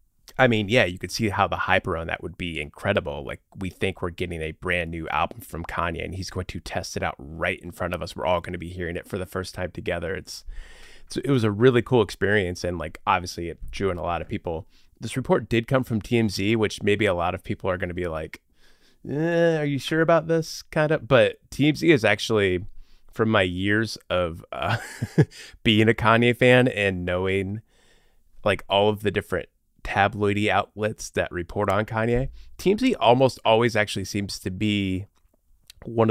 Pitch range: 90-115 Hz